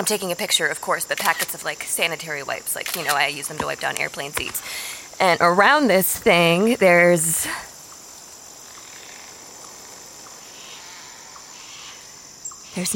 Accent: American